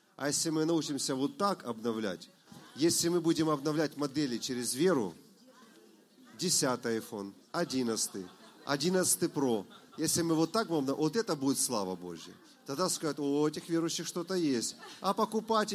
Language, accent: Russian, native